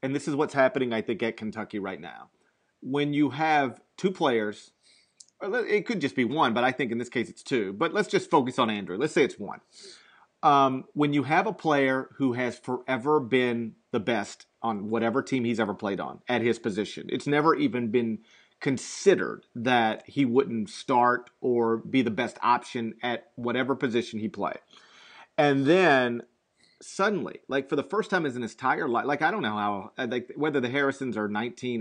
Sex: male